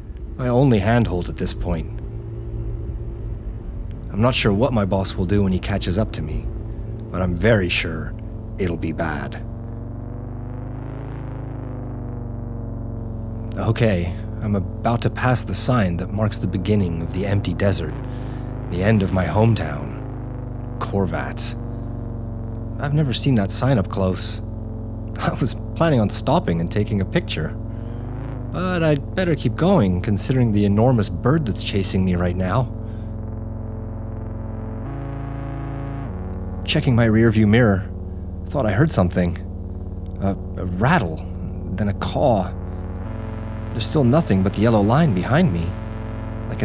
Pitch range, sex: 95-115 Hz, male